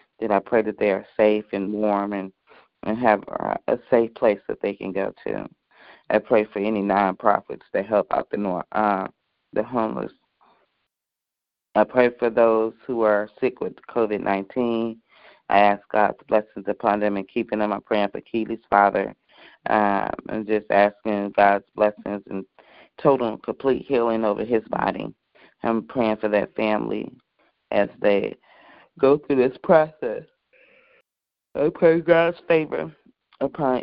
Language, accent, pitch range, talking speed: English, American, 105-120 Hz, 155 wpm